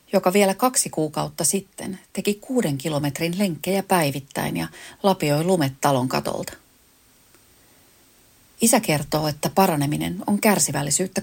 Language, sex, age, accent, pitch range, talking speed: Finnish, female, 30-49, native, 155-195 Hz, 110 wpm